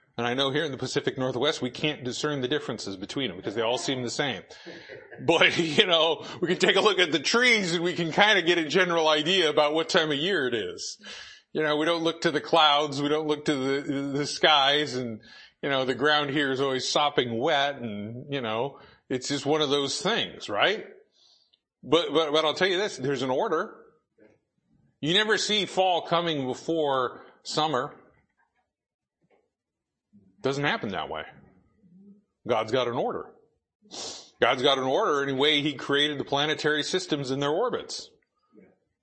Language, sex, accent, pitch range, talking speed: English, male, American, 140-180 Hz, 190 wpm